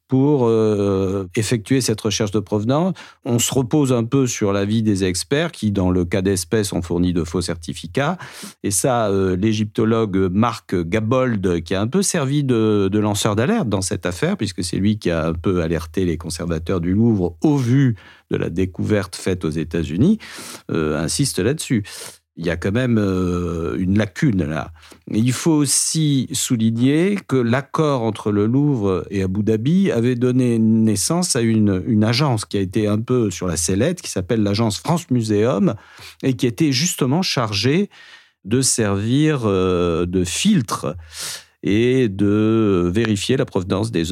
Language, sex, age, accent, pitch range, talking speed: French, male, 50-69, French, 90-120 Hz, 165 wpm